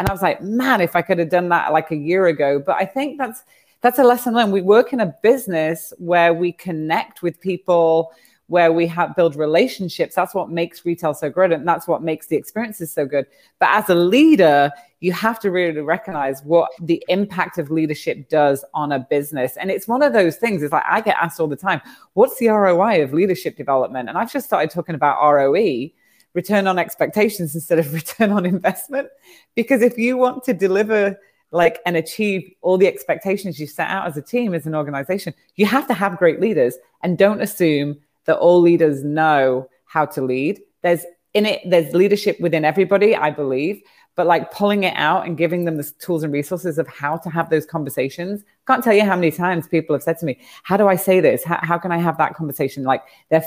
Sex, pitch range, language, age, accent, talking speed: female, 155-195 Hz, English, 30-49, British, 220 wpm